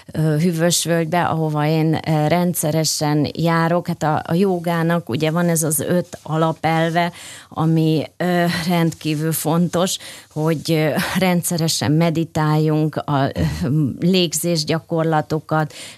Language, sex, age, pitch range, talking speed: Hungarian, female, 30-49, 155-185 Hz, 90 wpm